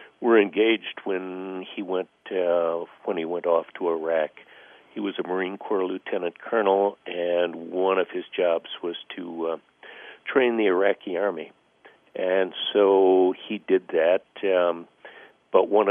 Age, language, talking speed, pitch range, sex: 60-79, English, 145 wpm, 85-95 Hz, male